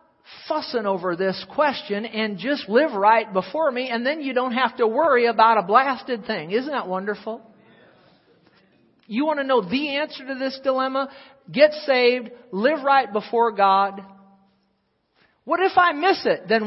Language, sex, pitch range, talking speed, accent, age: English, male, 205-280 Hz, 160 wpm, American, 50-69